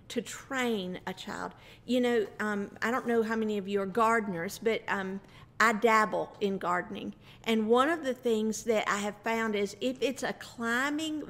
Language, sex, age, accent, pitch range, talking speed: English, female, 50-69, American, 215-275 Hz, 190 wpm